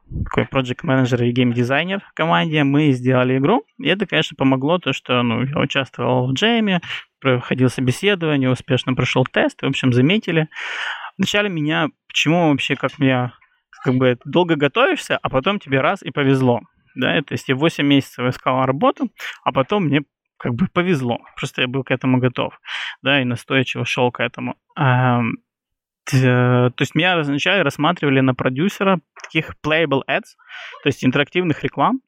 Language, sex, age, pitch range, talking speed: Russian, male, 20-39, 125-155 Hz, 155 wpm